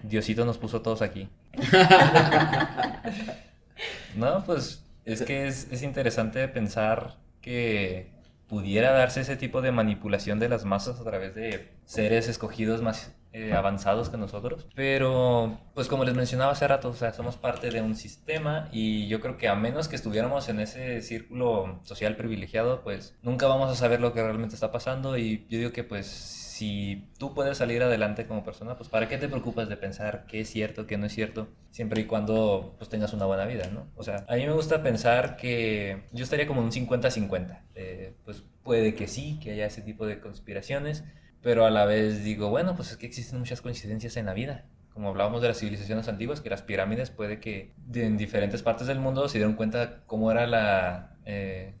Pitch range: 105-125 Hz